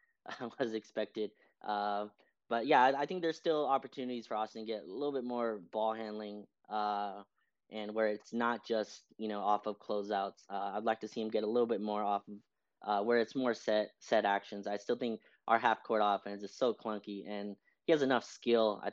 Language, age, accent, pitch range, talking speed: English, 20-39, American, 105-115 Hz, 215 wpm